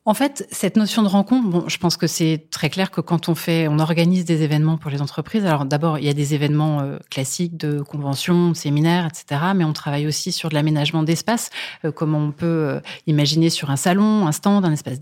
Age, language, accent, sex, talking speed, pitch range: 30-49, French, French, female, 220 wpm, 150-175 Hz